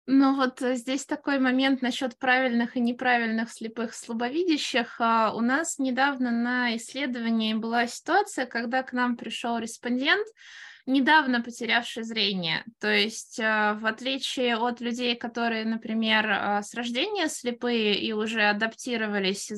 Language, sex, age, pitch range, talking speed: Russian, female, 20-39, 220-255 Hz, 125 wpm